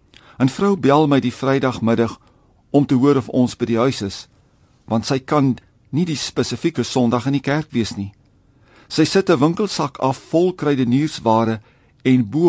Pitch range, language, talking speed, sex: 115-150 Hz, English, 185 wpm, male